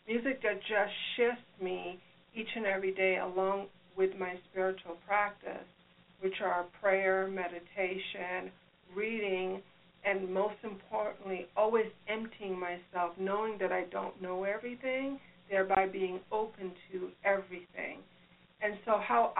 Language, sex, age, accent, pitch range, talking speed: English, female, 60-79, American, 190-230 Hz, 120 wpm